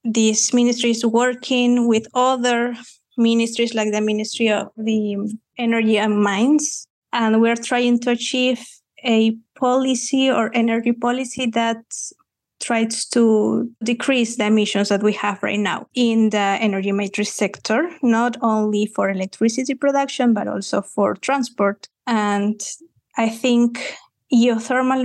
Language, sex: English, female